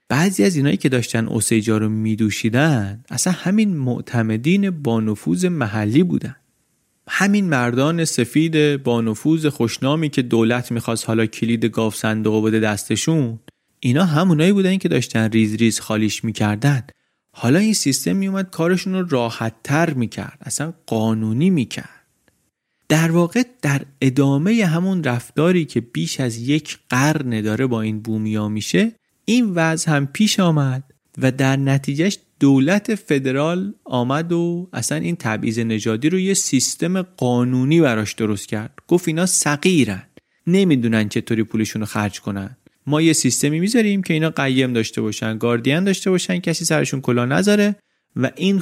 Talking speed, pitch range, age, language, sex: 140 wpm, 115-170 Hz, 30-49, Persian, male